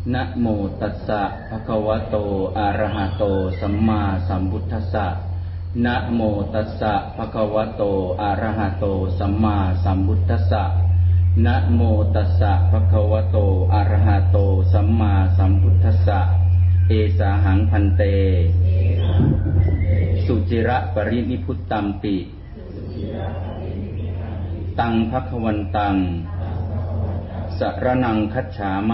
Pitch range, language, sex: 90-100 Hz, Thai, male